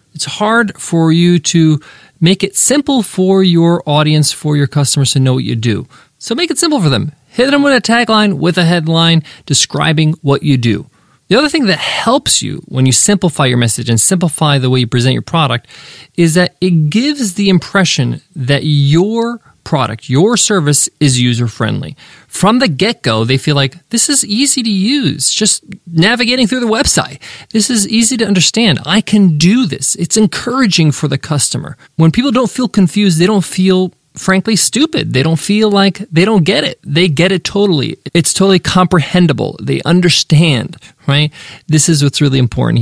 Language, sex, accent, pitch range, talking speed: English, male, American, 140-195 Hz, 185 wpm